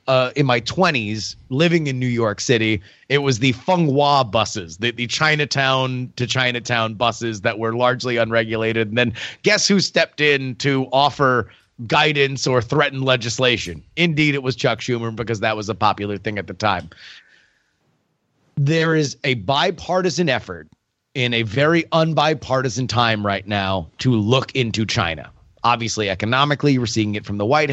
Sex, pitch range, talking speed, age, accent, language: male, 115-145 Hz, 160 wpm, 30-49, American, English